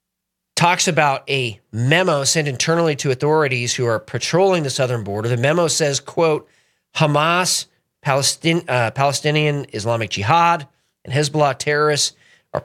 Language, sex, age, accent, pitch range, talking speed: English, male, 40-59, American, 135-185 Hz, 135 wpm